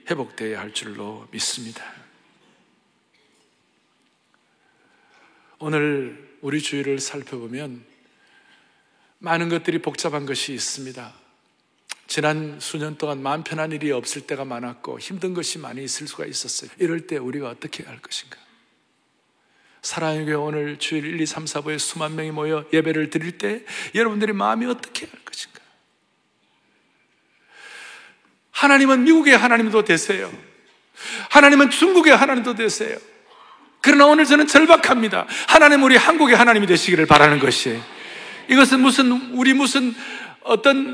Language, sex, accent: Korean, male, native